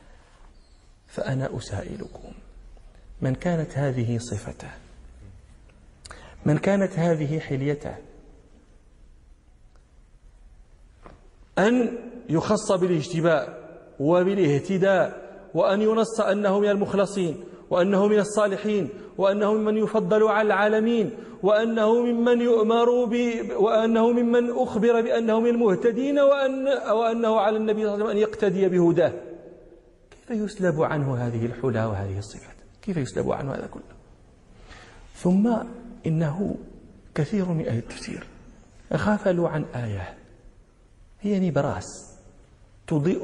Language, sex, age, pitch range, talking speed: Arabic, male, 40-59, 150-235 Hz, 95 wpm